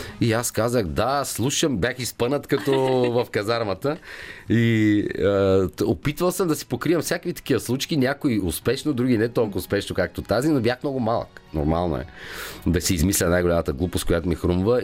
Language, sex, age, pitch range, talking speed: Bulgarian, male, 40-59, 95-140 Hz, 175 wpm